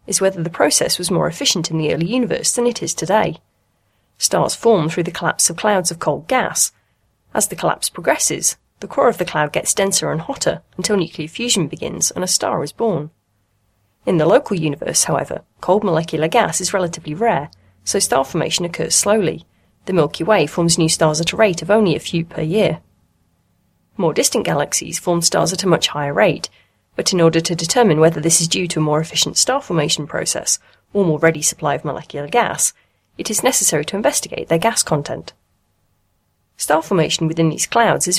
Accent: British